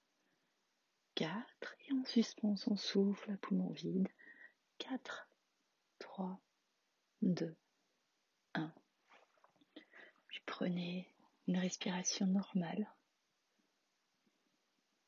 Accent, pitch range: French, 190-230 Hz